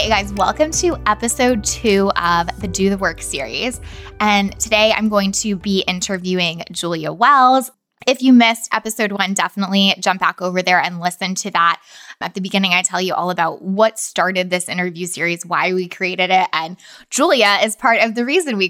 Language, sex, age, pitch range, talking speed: English, female, 20-39, 185-230 Hz, 195 wpm